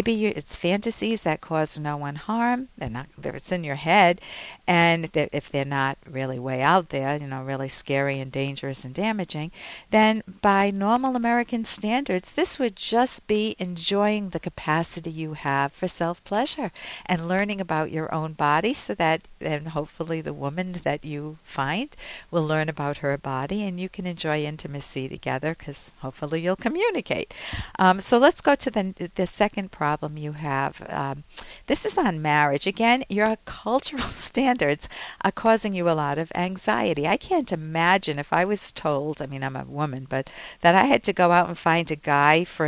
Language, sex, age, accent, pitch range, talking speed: English, female, 60-79, American, 150-200 Hz, 190 wpm